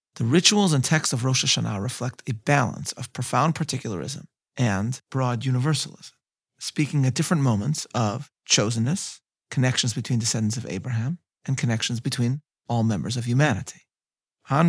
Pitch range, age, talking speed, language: 115-145 Hz, 40-59, 145 wpm, English